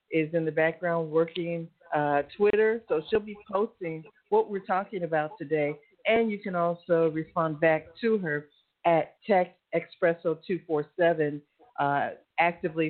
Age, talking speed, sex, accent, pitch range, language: 50-69, 135 wpm, female, American, 165-210 Hz, English